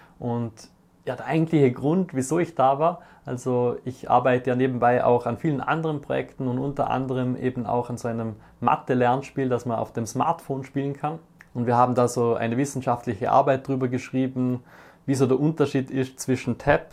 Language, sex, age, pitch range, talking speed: German, male, 20-39, 120-140 Hz, 180 wpm